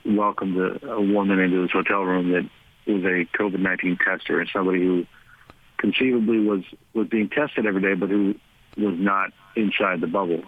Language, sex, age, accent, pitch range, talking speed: English, male, 50-69, American, 95-110 Hz, 165 wpm